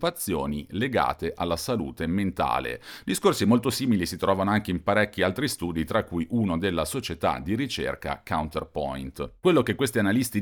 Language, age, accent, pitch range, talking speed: Italian, 40-59, native, 85-110 Hz, 150 wpm